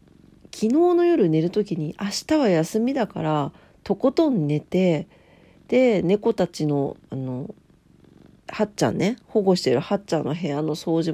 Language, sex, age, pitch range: Japanese, female, 40-59, 150-215 Hz